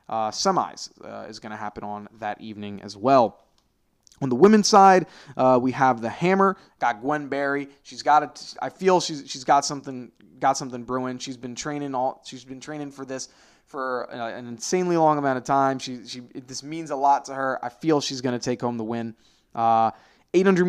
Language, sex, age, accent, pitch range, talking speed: English, male, 20-39, American, 115-145 Hz, 210 wpm